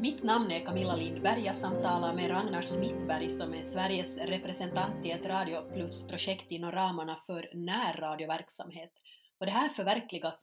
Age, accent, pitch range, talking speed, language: 30-49, Finnish, 165-205 Hz, 150 wpm, Danish